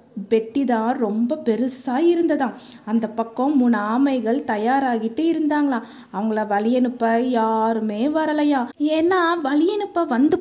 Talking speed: 100 wpm